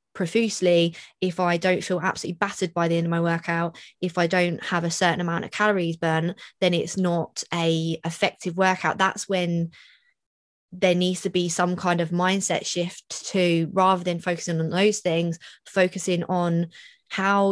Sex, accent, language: female, British, English